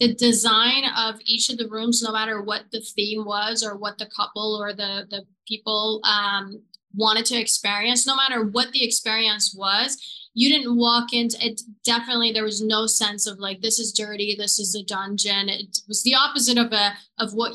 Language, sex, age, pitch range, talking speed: English, female, 20-39, 210-245 Hz, 200 wpm